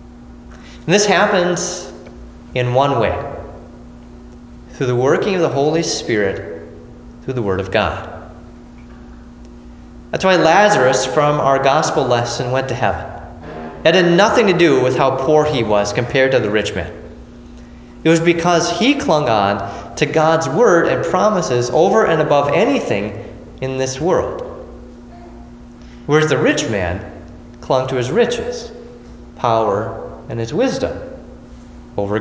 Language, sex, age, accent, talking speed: English, male, 30-49, American, 140 wpm